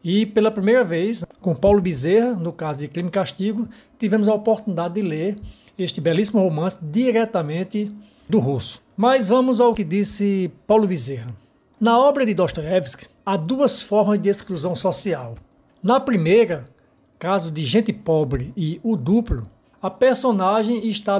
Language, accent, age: Portuguese, Brazilian, 60-79